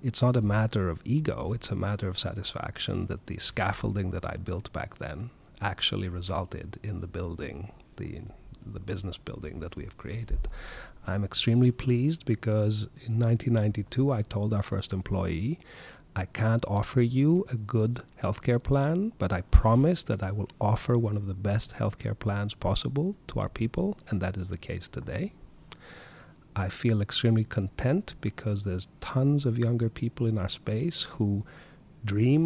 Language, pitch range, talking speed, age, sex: English, 100-130 Hz, 165 wpm, 30-49, male